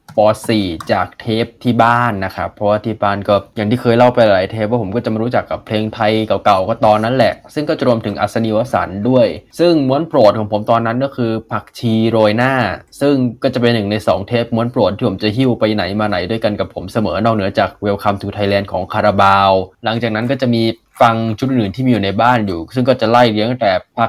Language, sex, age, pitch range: Thai, male, 20-39, 105-125 Hz